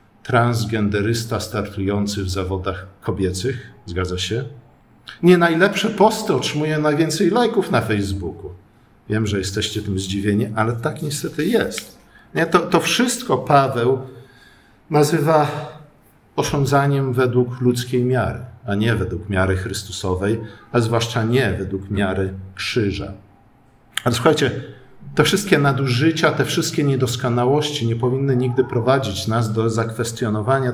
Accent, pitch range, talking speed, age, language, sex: native, 110-140 Hz, 115 wpm, 50-69, Polish, male